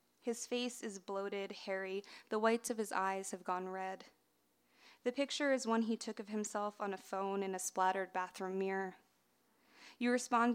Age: 20-39